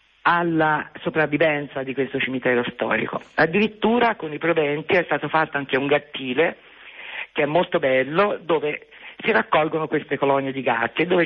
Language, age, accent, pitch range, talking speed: Italian, 40-59, native, 140-165 Hz, 150 wpm